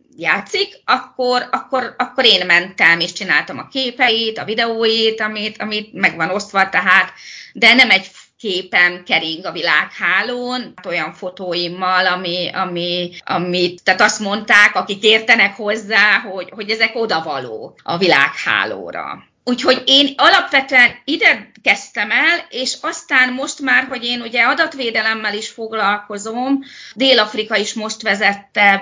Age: 30-49